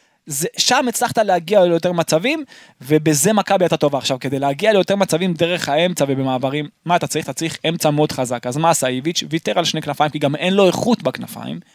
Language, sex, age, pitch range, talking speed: Hebrew, male, 20-39, 150-210 Hz, 200 wpm